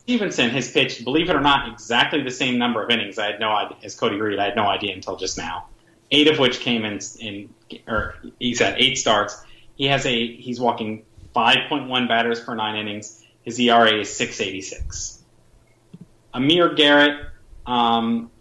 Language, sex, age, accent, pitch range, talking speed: English, male, 30-49, American, 115-150 Hz, 180 wpm